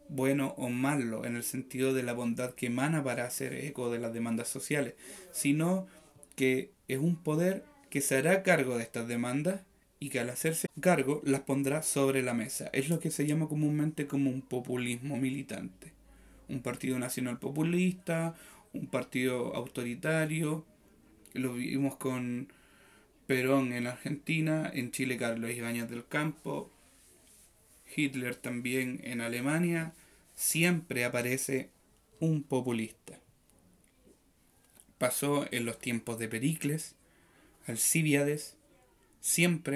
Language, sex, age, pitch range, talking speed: Spanish, male, 30-49, 120-145 Hz, 130 wpm